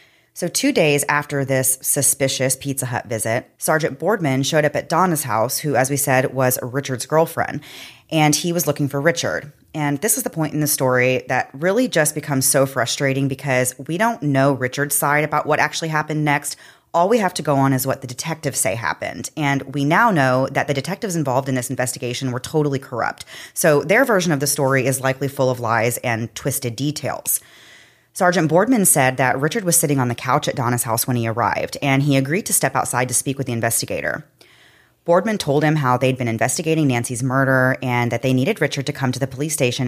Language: English